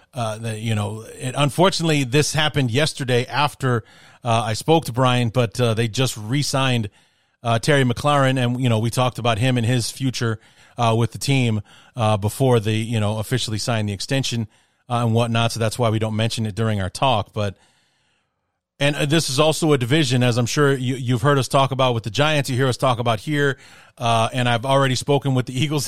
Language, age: English, 30-49